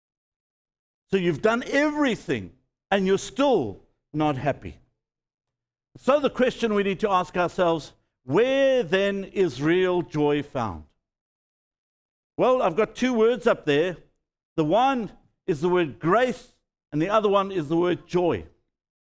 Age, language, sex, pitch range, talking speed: 60-79, English, male, 155-225 Hz, 140 wpm